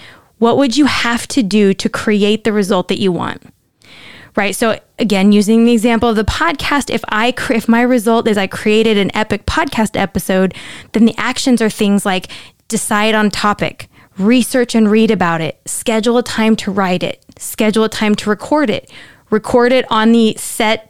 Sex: female